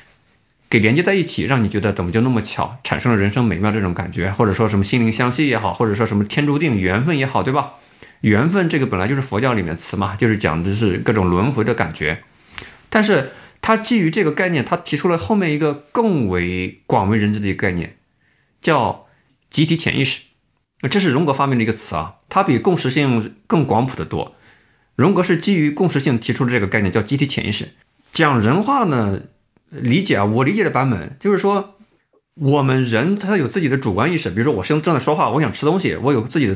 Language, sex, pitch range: Chinese, male, 105-165 Hz